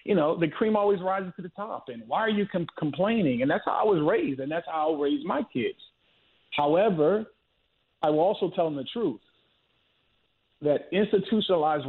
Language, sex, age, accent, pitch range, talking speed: English, male, 40-59, American, 140-175 Hz, 185 wpm